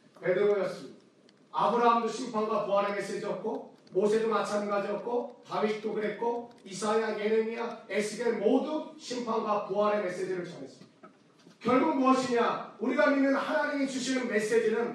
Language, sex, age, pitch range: Korean, male, 40-59, 200-240 Hz